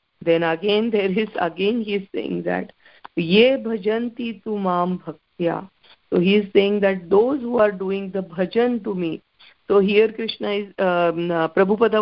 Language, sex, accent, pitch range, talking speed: English, female, Indian, 170-210 Hz, 170 wpm